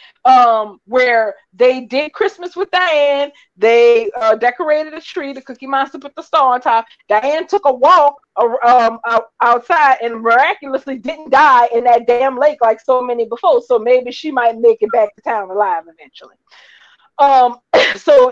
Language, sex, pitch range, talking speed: English, female, 235-345 Hz, 165 wpm